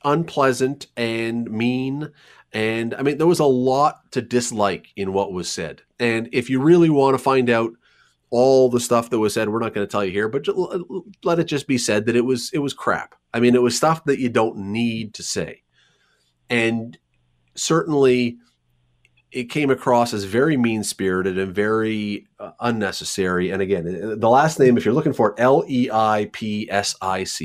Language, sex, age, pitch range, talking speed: English, male, 30-49, 100-130 Hz, 180 wpm